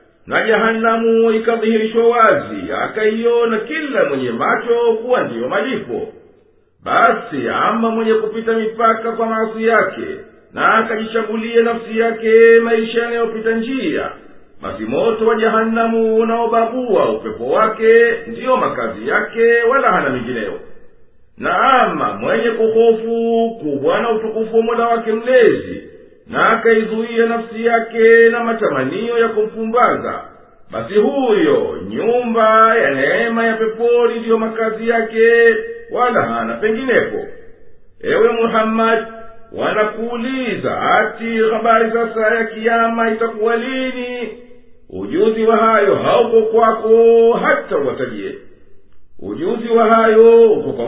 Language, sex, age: Swahili, male, 50-69